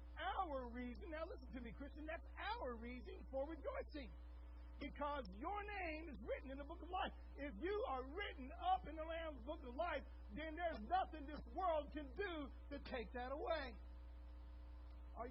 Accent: American